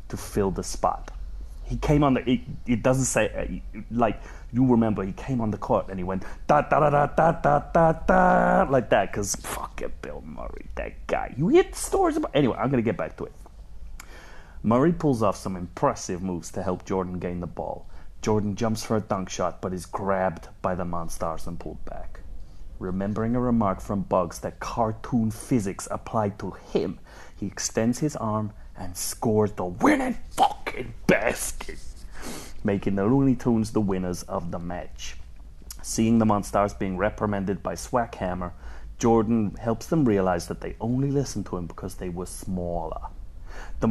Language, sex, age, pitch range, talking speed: English, male, 30-49, 90-120 Hz, 175 wpm